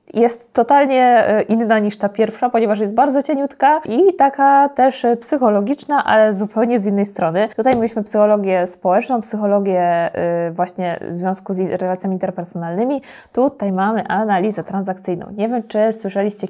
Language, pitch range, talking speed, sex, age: Polish, 185-220 Hz, 140 wpm, female, 20-39